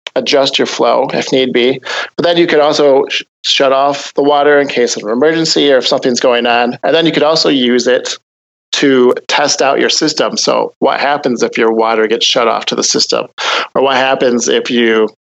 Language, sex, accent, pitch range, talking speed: English, male, American, 120-155 Hz, 215 wpm